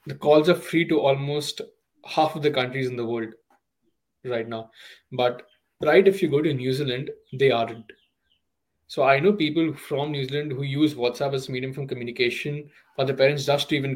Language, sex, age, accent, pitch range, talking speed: English, male, 20-39, Indian, 130-160 Hz, 200 wpm